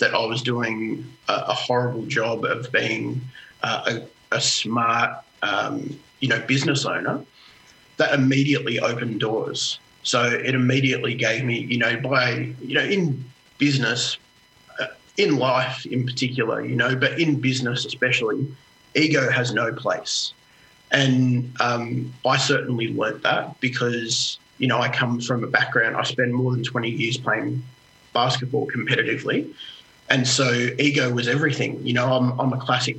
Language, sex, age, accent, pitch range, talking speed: English, male, 30-49, Australian, 120-135 Hz, 150 wpm